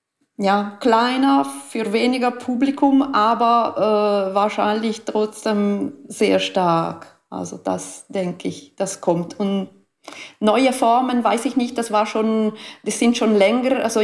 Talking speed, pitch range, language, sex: 135 wpm, 170-210 Hz, German, female